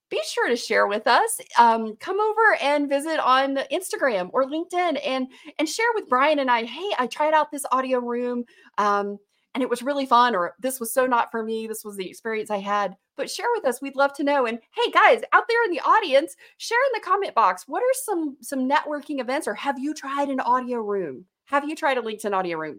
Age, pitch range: 30-49, 210-305 Hz